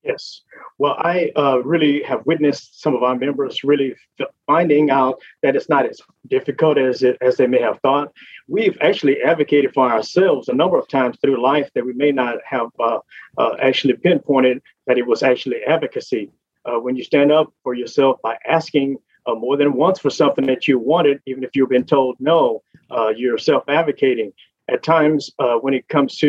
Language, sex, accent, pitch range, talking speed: English, male, American, 130-155 Hz, 195 wpm